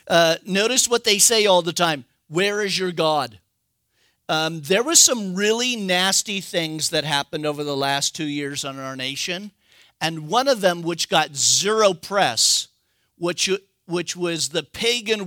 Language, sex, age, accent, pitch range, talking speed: English, male, 50-69, American, 140-185 Hz, 165 wpm